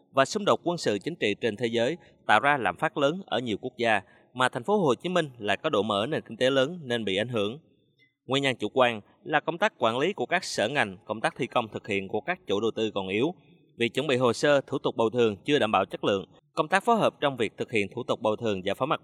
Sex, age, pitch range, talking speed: male, 20-39, 110-150 Hz, 290 wpm